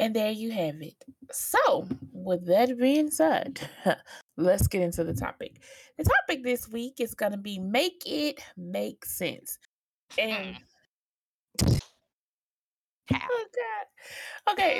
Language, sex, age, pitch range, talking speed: English, female, 20-39, 170-250 Hz, 125 wpm